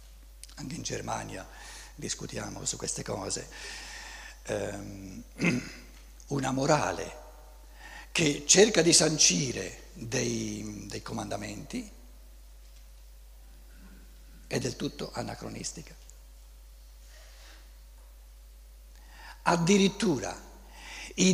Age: 60-79